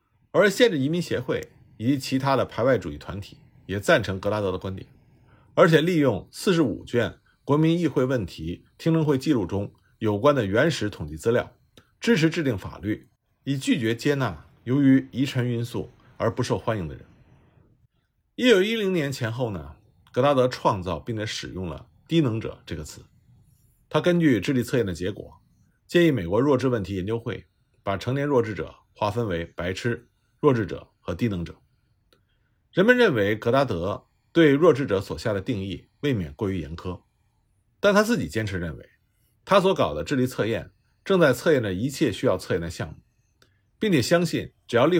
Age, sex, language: 50-69, male, Chinese